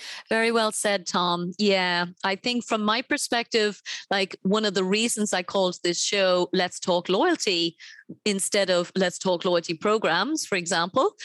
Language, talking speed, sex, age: English, 160 wpm, female, 30-49